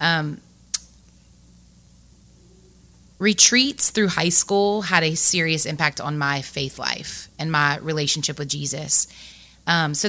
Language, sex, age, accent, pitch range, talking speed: English, female, 30-49, American, 145-185 Hz, 120 wpm